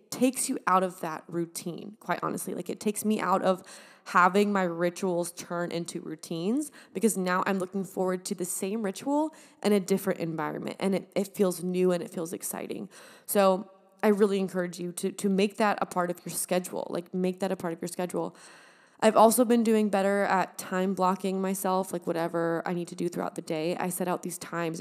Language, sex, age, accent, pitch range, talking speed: English, female, 20-39, American, 180-225 Hz, 210 wpm